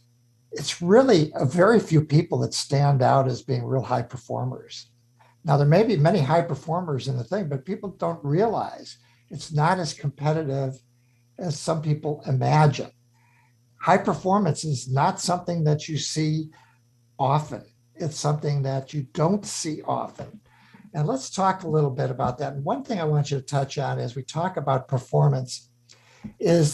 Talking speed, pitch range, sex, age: 170 wpm, 125-160 Hz, male, 60-79